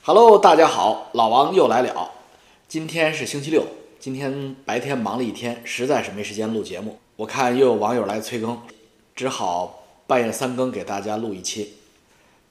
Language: Chinese